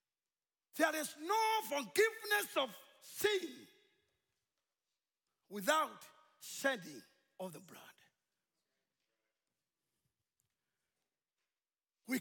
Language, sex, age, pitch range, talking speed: English, male, 50-69, 235-300 Hz, 60 wpm